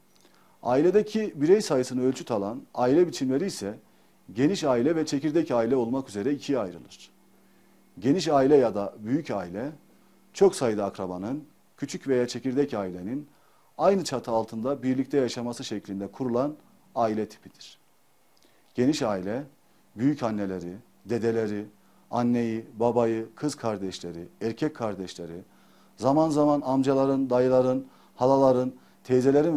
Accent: native